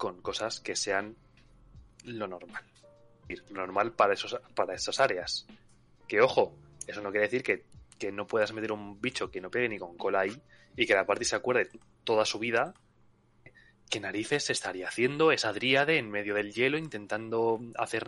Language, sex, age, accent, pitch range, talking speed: Spanish, male, 20-39, Spanish, 105-125 Hz, 185 wpm